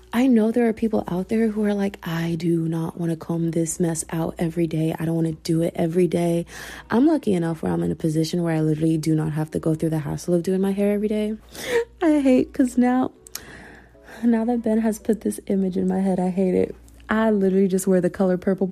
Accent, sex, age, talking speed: American, female, 20-39, 250 wpm